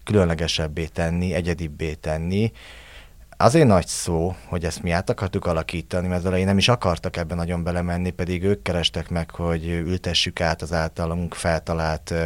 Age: 30-49